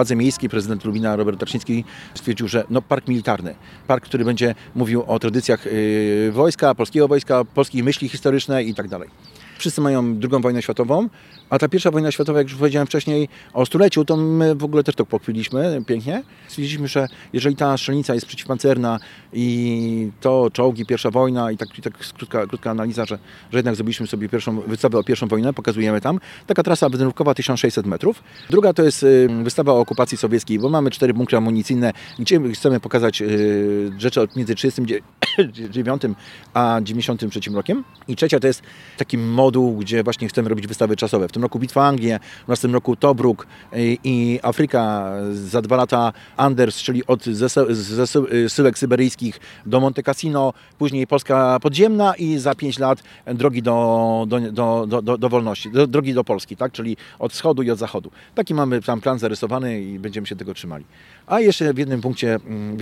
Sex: male